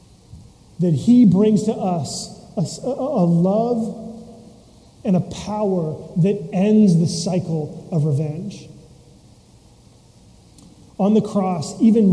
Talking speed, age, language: 105 wpm, 30-49, English